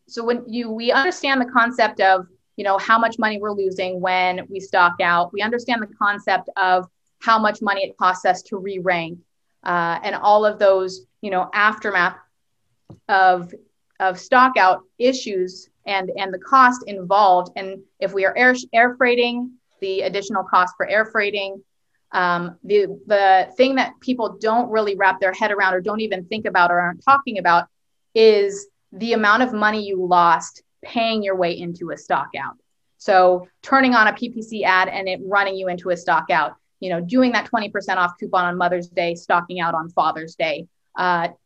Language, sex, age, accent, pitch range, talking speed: English, female, 30-49, American, 185-220 Hz, 185 wpm